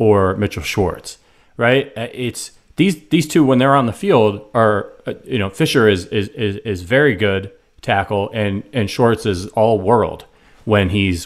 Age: 30-49